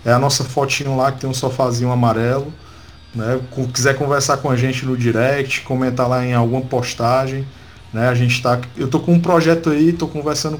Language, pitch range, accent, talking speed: Portuguese, 125-150 Hz, Brazilian, 200 wpm